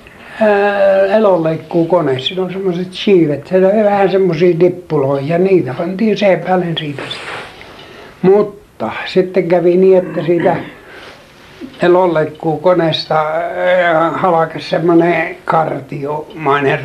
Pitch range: 155-185 Hz